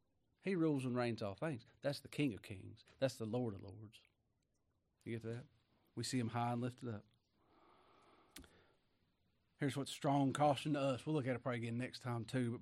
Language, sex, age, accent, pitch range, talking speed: English, male, 40-59, American, 120-150 Hz, 200 wpm